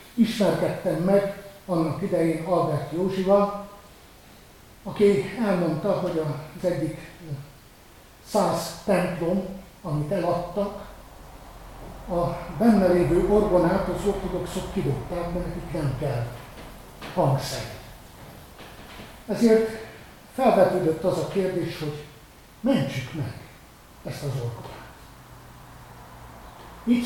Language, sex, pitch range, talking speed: Hungarian, male, 145-185 Hz, 85 wpm